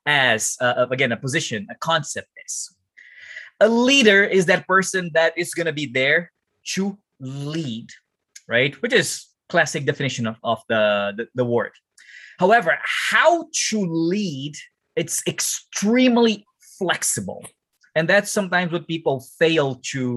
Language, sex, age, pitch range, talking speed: English, male, 20-39, 140-205 Hz, 135 wpm